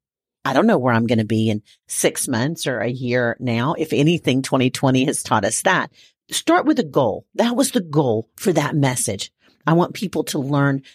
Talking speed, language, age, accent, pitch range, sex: 210 wpm, English, 40-59, American, 130-170 Hz, female